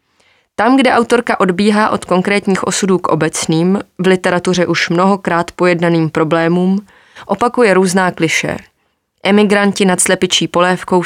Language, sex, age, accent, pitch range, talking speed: Czech, female, 20-39, native, 165-195 Hz, 120 wpm